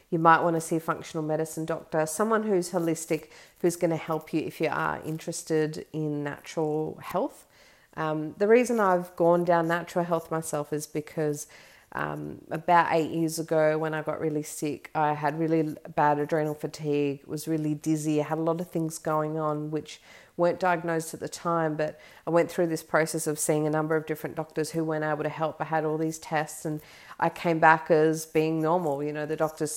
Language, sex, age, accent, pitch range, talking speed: English, female, 40-59, Australian, 150-165 Hz, 205 wpm